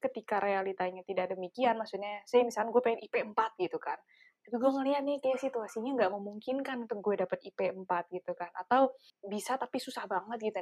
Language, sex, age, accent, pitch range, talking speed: Indonesian, female, 20-39, native, 185-235 Hz, 180 wpm